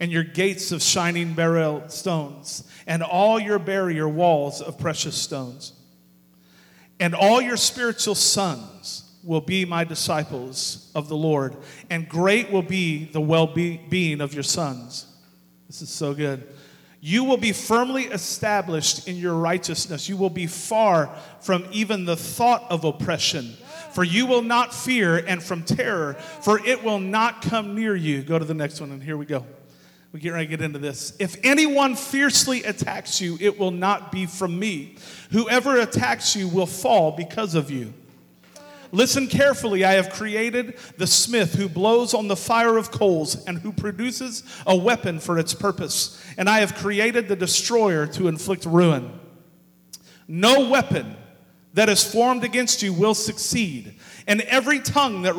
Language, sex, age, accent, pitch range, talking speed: English, male, 40-59, American, 160-215 Hz, 165 wpm